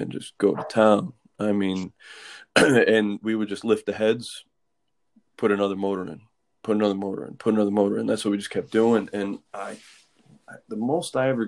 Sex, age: male, 30-49